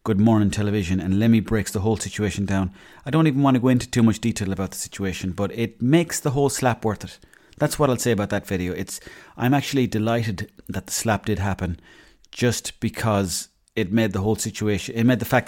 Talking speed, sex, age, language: 225 wpm, male, 30-49, English